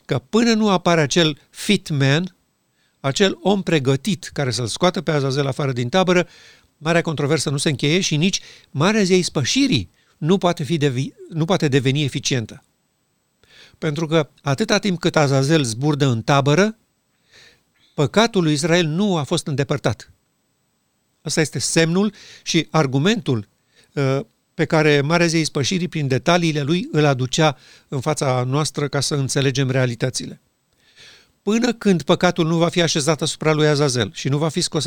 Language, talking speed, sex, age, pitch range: Romanian, 155 wpm, male, 50-69, 140-175 Hz